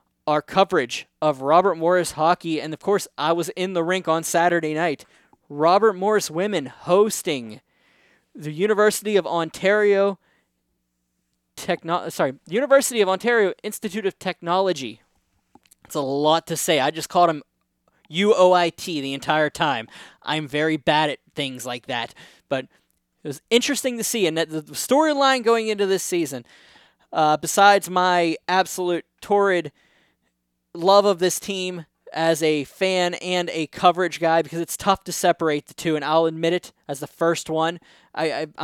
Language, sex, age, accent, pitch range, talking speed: English, male, 20-39, American, 150-185 Hz, 155 wpm